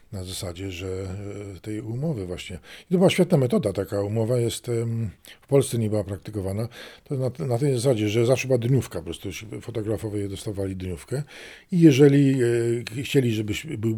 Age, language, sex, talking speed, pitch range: 50-69, Polish, male, 165 wpm, 100-115 Hz